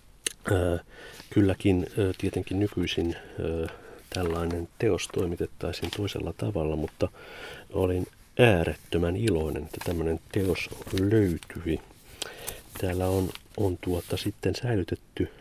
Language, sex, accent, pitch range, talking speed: Finnish, male, native, 85-100 Hz, 85 wpm